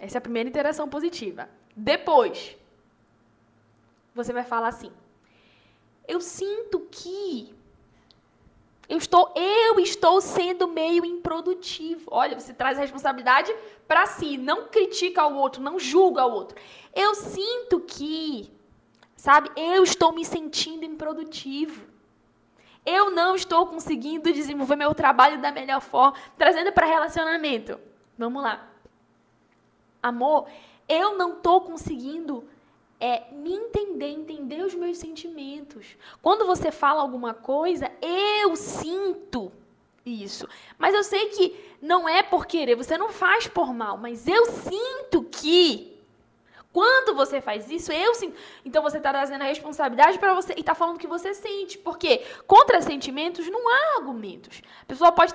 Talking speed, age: 135 wpm, 10-29